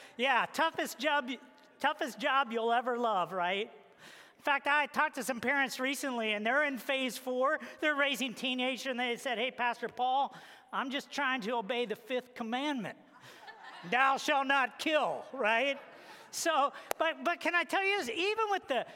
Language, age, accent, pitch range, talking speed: English, 40-59, American, 230-285 Hz, 175 wpm